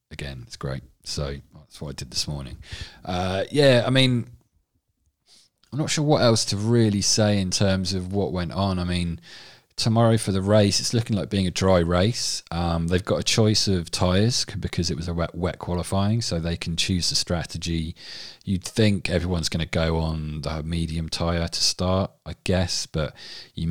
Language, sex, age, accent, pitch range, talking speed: English, male, 30-49, British, 80-100 Hz, 195 wpm